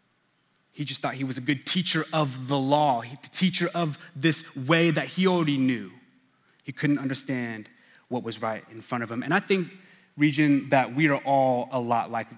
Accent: American